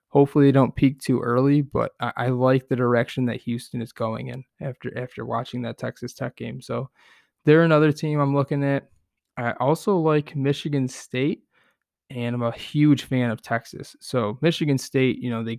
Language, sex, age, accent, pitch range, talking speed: English, male, 20-39, American, 120-140 Hz, 190 wpm